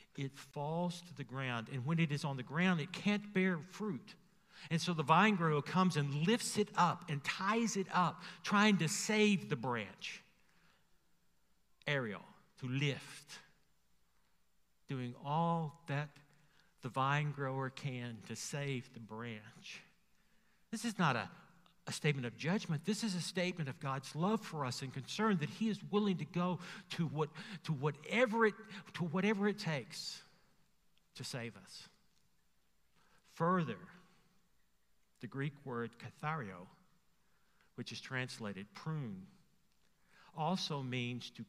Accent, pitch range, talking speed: American, 135-185 Hz, 140 wpm